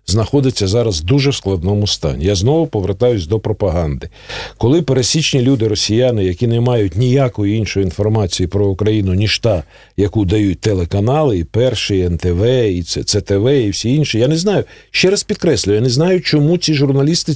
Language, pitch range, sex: Russian, 105-135 Hz, male